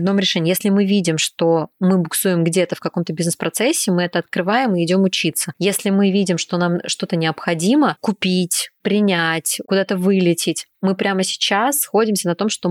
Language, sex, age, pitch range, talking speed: Russian, female, 20-39, 170-195 Hz, 175 wpm